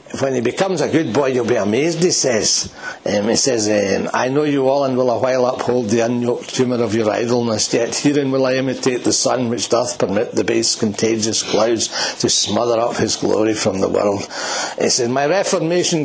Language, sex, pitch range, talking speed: English, male, 125-170 Hz, 210 wpm